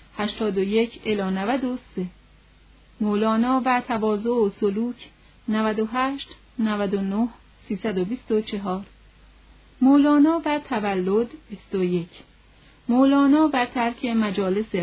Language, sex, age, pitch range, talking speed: Persian, female, 40-59, 195-255 Hz, 110 wpm